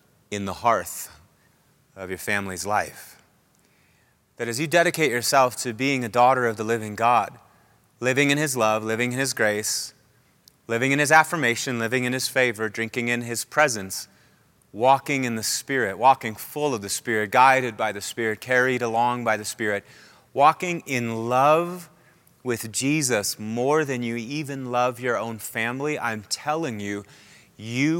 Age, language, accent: 30-49, English, American